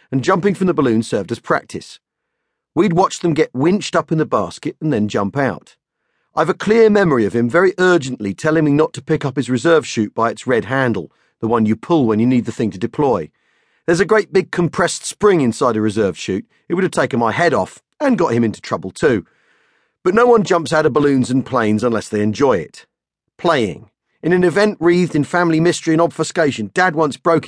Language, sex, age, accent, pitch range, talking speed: English, male, 40-59, British, 125-175 Hz, 225 wpm